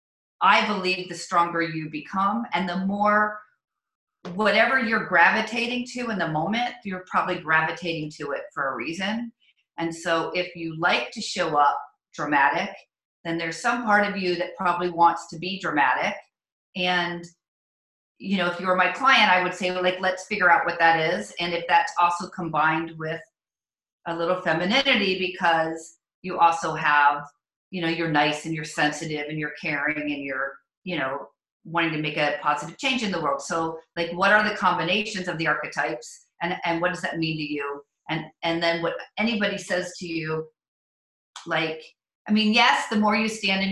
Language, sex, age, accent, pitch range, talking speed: English, female, 40-59, American, 160-190 Hz, 185 wpm